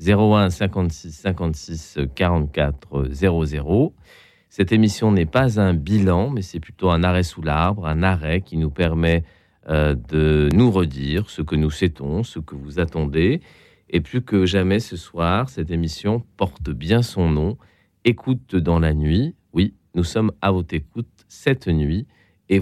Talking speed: 155 wpm